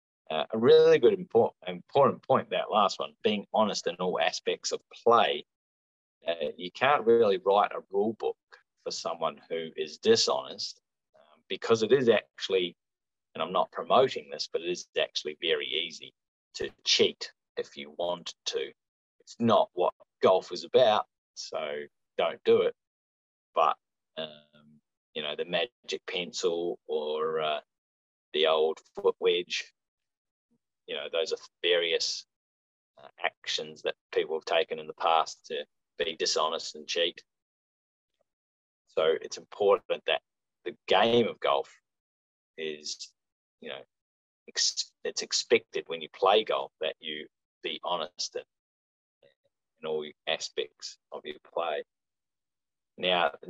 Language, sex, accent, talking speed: English, male, Australian, 140 wpm